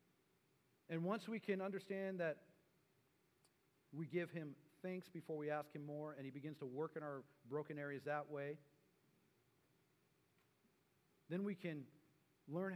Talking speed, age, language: 140 wpm, 40-59, English